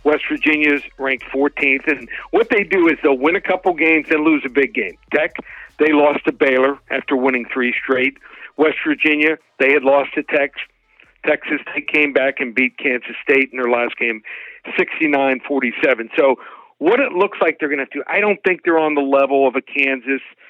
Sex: male